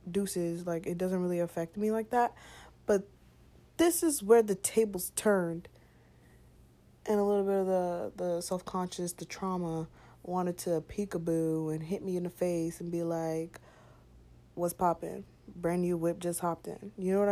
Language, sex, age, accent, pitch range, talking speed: English, female, 20-39, American, 165-200 Hz, 170 wpm